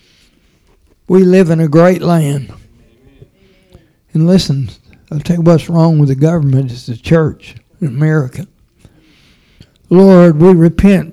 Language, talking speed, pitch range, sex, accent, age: English, 130 wpm, 140-180 Hz, male, American, 60-79